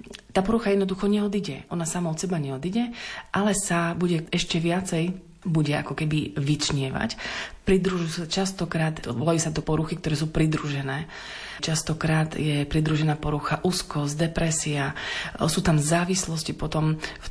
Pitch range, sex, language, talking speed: 150-175 Hz, female, Slovak, 130 wpm